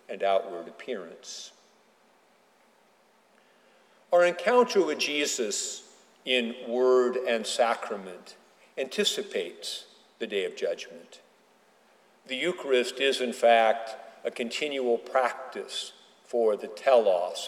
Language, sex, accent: English, male, American